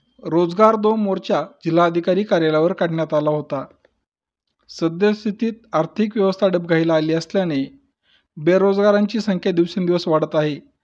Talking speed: 105 wpm